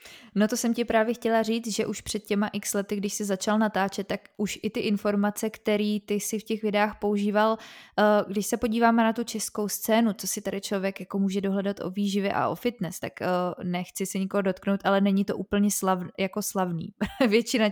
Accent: native